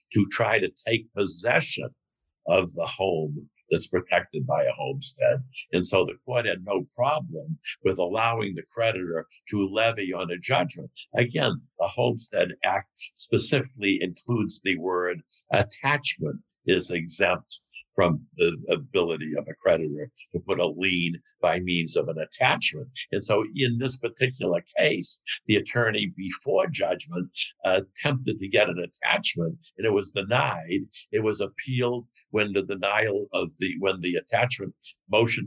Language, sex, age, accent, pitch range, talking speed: English, male, 60-79, American, 95-130 Hz, 145 wpm